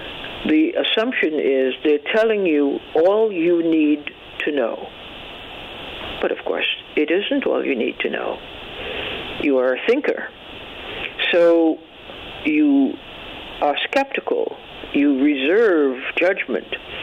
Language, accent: English, American